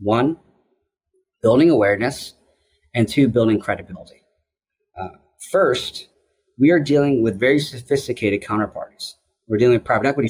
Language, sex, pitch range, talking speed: English, male, 105-145 Hz, 120 wpm